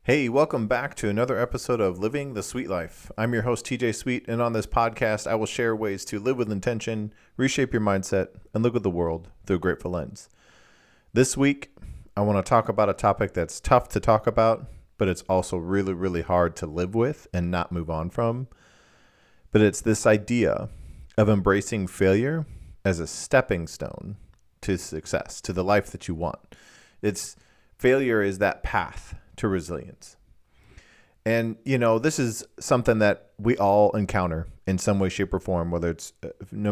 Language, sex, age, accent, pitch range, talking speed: English, male, 40-59, American, 90-110 Hz, 185 wpm